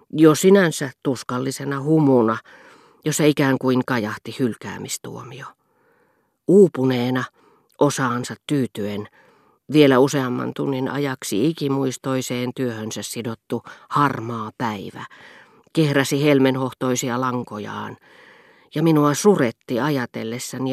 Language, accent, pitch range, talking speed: Finnish, native, 120-145 Hz, 80 wpm